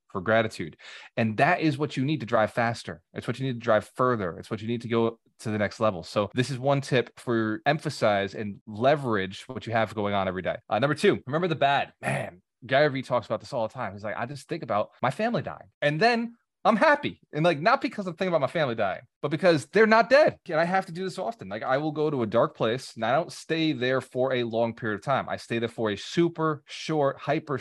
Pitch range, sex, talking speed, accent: 115-145 Hz, male, 265 wpm, American